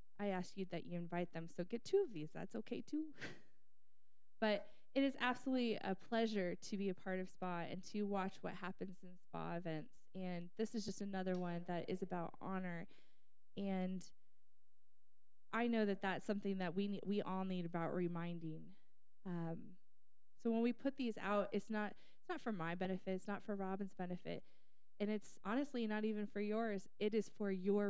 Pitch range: 180-215 Hz